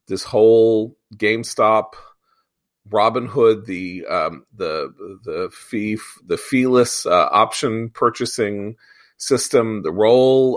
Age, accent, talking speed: 40-59, American, 95 wpm